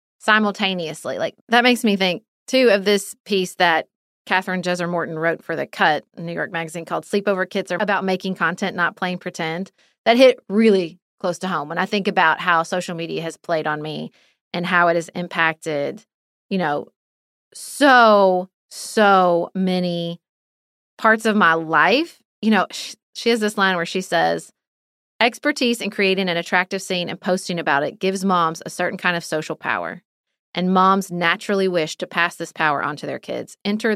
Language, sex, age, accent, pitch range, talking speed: English, female, 30-49, American, 175-245 Hz, 180 wpm